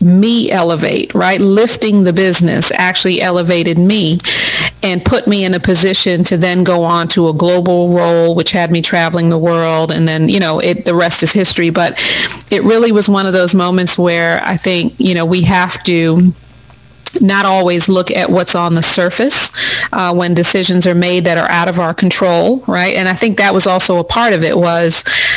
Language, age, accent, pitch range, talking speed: English, 40-59, American, 175-195 Hz, 200 wpm